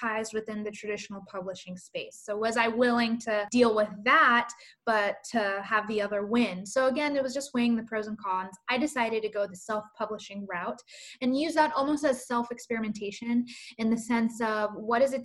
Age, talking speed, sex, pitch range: 10-29, 195 wpm, female, 215-250 Hz